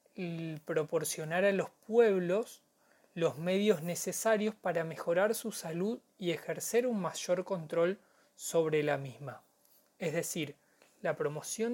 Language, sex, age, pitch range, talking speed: Spanish, male, 20-39, 165-200 Hz, 120 wpm